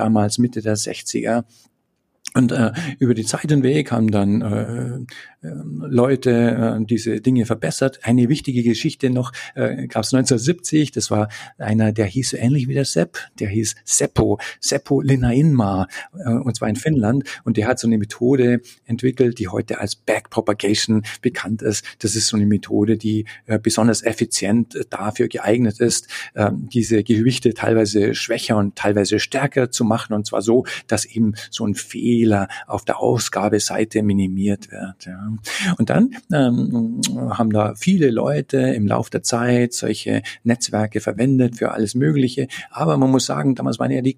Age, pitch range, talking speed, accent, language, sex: 40-59, 110-130 Hz, 165 wpm, German, English, male